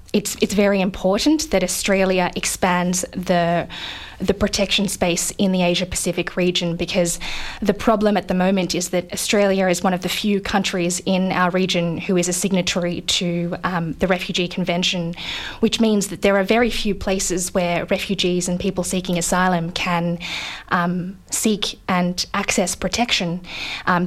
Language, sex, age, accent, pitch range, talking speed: English, female, 20-39, Australian, 175-200 Hz, 155 wpm